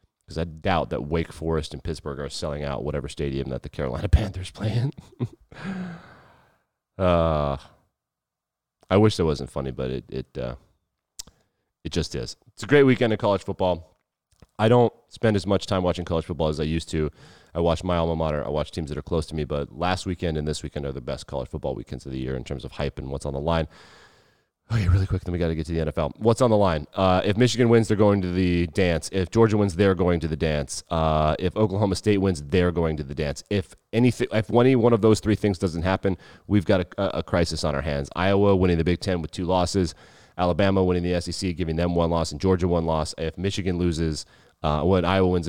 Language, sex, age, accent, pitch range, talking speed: English, male, 30-49, American, 80-95 Hz, 230 wpm